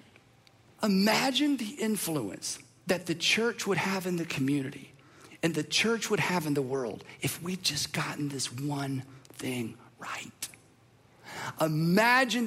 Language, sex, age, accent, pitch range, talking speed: English, male, 50-69, American, 160-235 Hz, 135 wpm